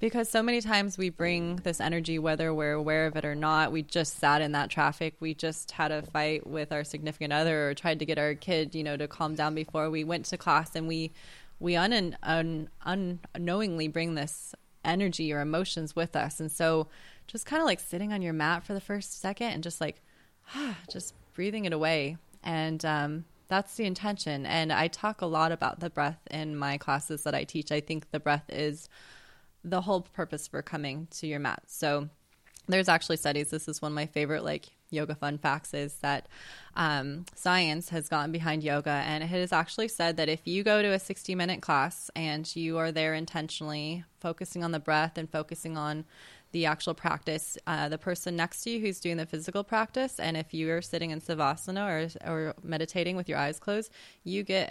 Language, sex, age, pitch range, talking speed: English, female, 20-39, 155-175 Hz, 210 wpm